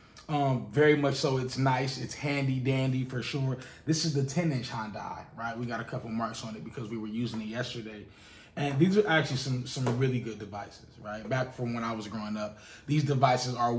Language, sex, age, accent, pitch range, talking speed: English, male, 20-39, American, 110-135 Hz, 220 wpm